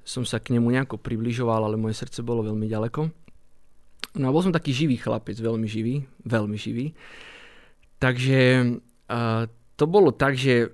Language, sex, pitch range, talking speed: Slovak, male, 115-135 Hz, 160 wpm